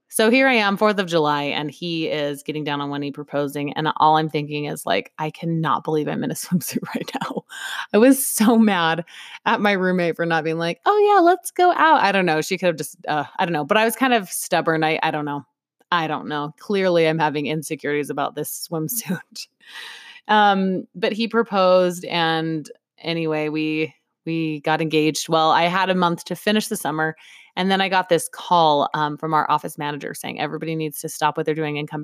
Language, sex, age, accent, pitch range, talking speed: English, female, 20-39, American, 155-185 Hz, 220 wpm